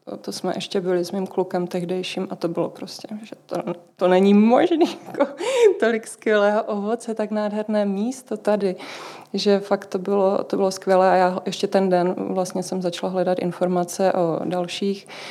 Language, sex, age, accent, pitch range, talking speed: Czech, female, 20-39, native, 180-195 Hz, 165 wpm